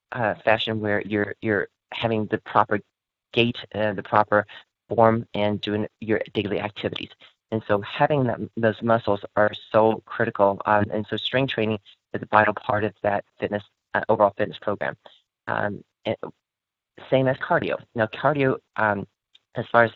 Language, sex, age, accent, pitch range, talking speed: English, male, 30-49, American, 100-110 Hz, 160 wpm